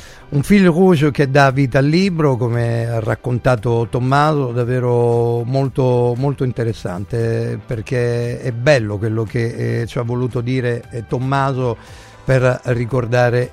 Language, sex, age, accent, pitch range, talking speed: Italian, male, 50-69, native, 115-130 Hz, 125 wpm